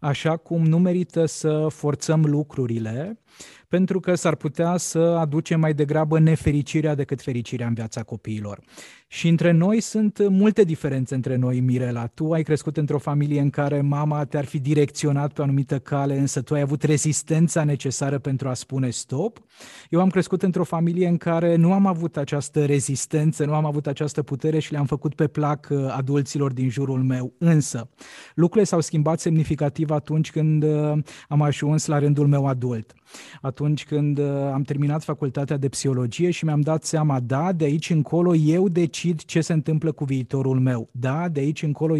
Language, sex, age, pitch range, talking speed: Romanian, male, 20-39, 140-165 Hz, 175 wpm